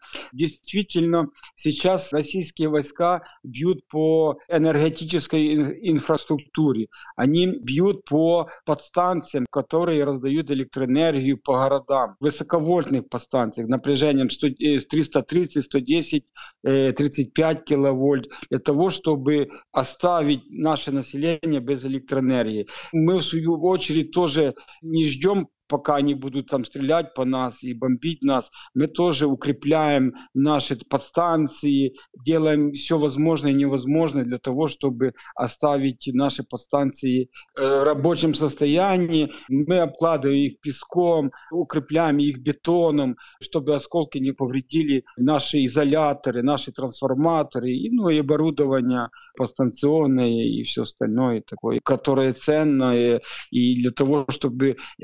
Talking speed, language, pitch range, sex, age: 105 wpm, Russian, 135-160 Hz, male, 50-69